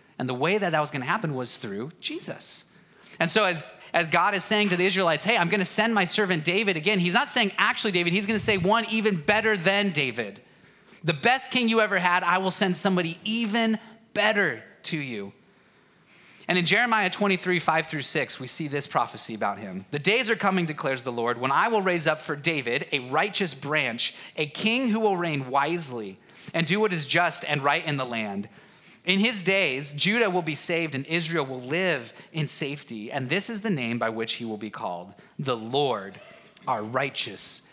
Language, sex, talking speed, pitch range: English, male, 210 wpm, 140-200 Hz